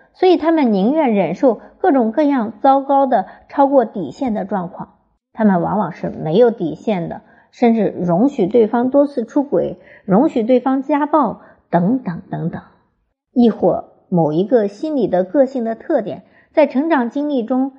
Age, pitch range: 50-69, 185-260 Hz